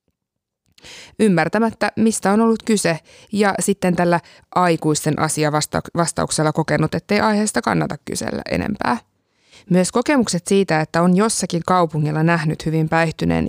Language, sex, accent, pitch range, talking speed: Finnish, female, native, 165-220 Hz, 120 wpm